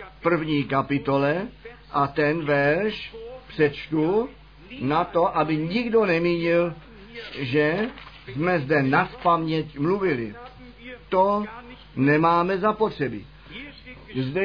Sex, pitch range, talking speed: male, 150-220 Hz, 85 wpm